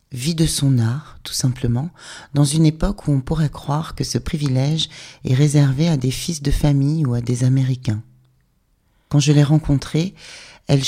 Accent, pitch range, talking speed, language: French, 130-150 Hz, 175 wpm, English